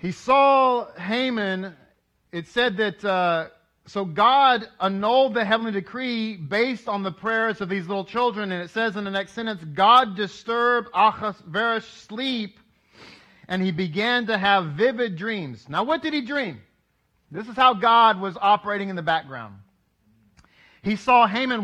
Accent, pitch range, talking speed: American, 175-230 Hz, 155 wpm